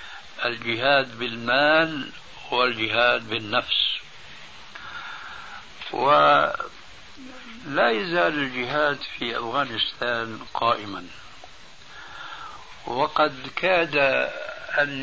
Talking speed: 50 wpm